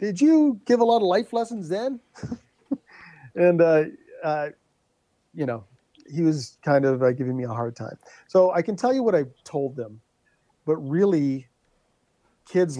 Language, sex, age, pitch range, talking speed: English, male, 40-59, 125-155 Hz, 175 wpm